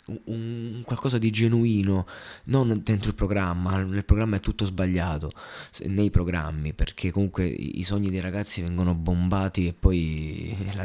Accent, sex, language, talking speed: native, male, Italian, 145 wpm